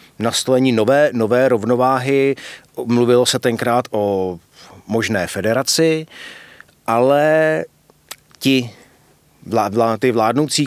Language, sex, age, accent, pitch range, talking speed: Czech, male, 30-49, native, 110-130 Hz, 80 wpm